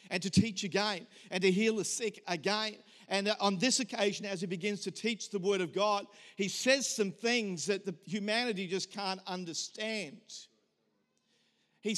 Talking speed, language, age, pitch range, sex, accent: 165 wpm, English, 50-69, 195-230 Hz, male, Australian